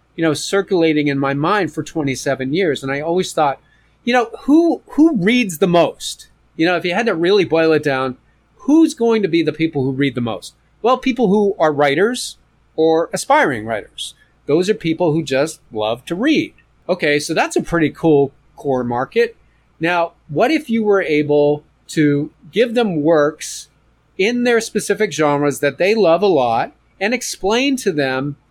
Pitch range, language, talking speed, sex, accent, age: 140-195 Hz, English, 185 wpm, male, American, 40-59